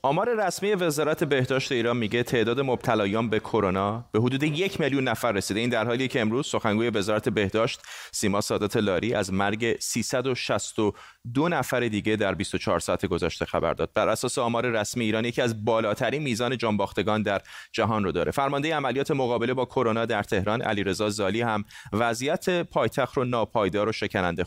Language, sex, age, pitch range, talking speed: Persian, male, 30-49, 105-130 Hz, 165 wpm